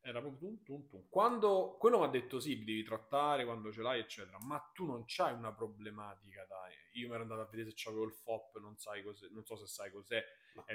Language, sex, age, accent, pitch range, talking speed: Italian, male, 20-39, native, 110-130 Hz, 235 wpm